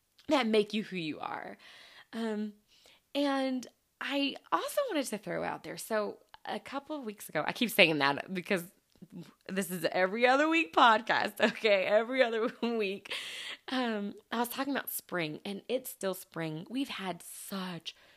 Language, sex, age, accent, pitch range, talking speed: English, female, 20-39, American, 165-240 Hz, 160 wpm